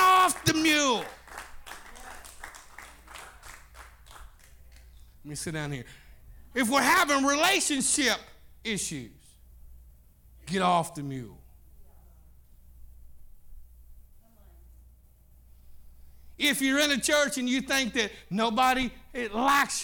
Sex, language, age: male, English, 50-69